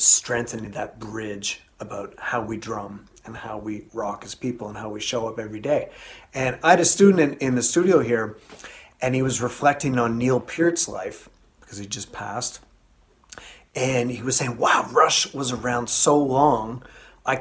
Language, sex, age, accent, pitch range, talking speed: English, male, 30-49, American, 110-125 Hz, 180 wpm